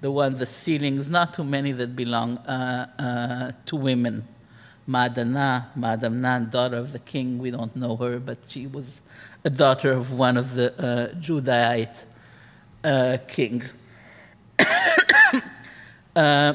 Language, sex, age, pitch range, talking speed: English, male, 50-69, 125-155 Hz, 140 wpm